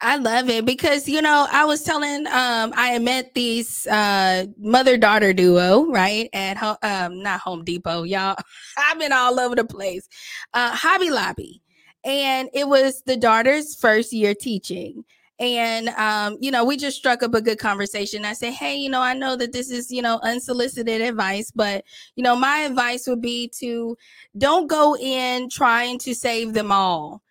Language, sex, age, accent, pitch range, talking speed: English, female, 20-39, American, 215-275 Hz, 180 wpm